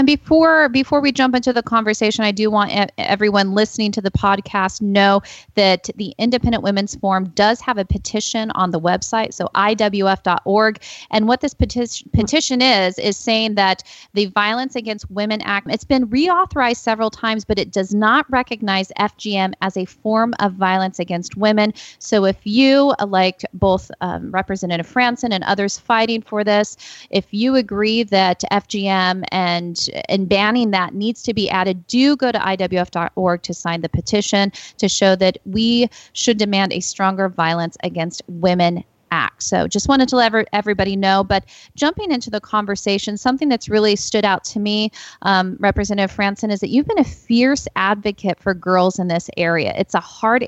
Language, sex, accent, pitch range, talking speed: English, female, American, 190-230 Hz, 175 wpm